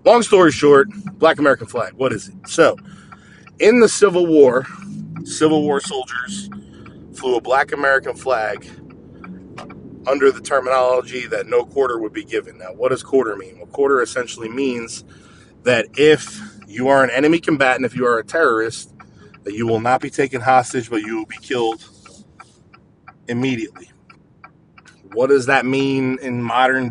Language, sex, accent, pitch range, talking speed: English, male, American, 125-170 Hz, 160 wpm